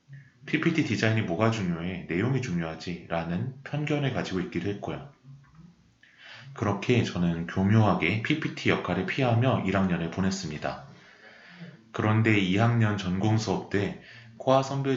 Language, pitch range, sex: Korean, 90-125 Hz, male